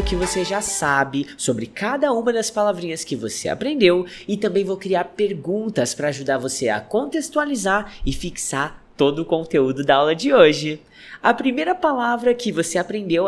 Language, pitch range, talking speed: English, 130-225 Hz, 165 wpm